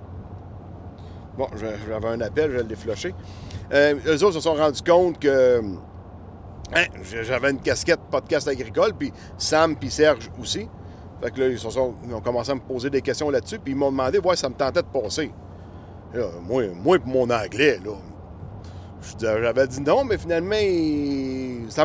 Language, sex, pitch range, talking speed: French, male, 105-155 Hz, 175 wpm